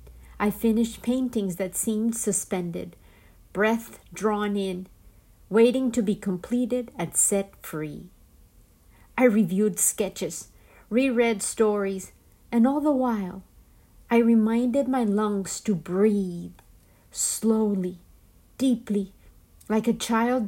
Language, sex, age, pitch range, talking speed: Spanish, female, 50-69, 185-230 Hz, 105 wpm